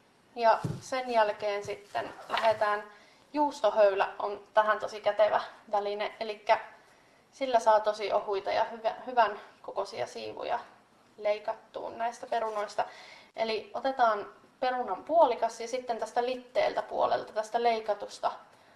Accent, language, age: native, Finnish, 20-39